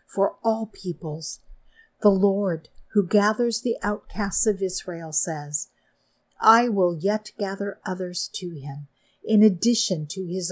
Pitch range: 160-220 Hz